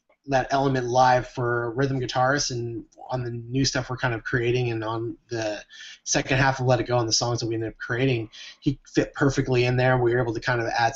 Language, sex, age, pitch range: English, male, 20-39, 115-135 Hz